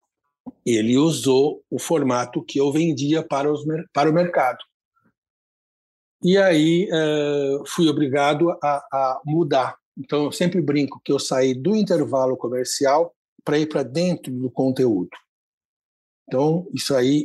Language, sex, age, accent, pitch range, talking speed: Portuguese, male, 60-79, Brazilian, 130-185 Hz, 135 wpm